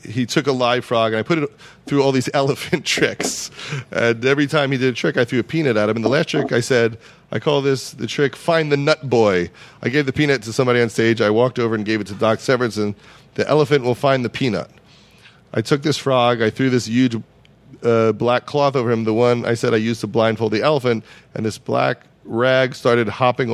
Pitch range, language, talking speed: 115-145 Hz, English, 240 wpm